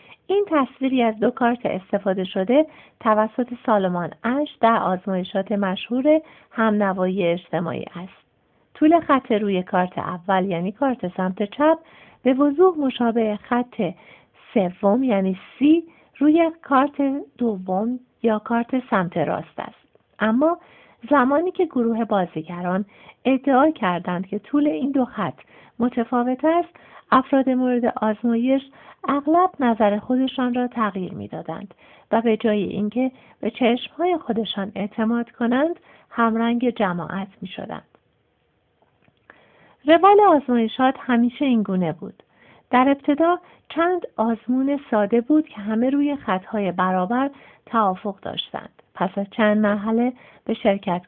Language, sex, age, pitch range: Persian, female, 50-69, 200-275 Hz